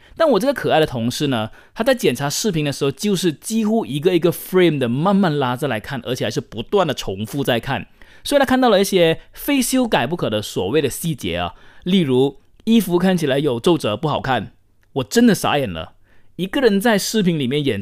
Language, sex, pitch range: Chinese, male, 120-180 Hz